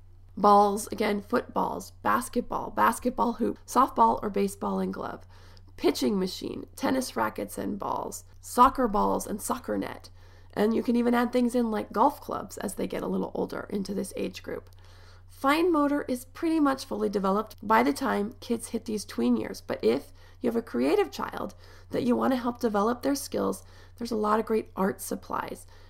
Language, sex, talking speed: English, female, 185 wpm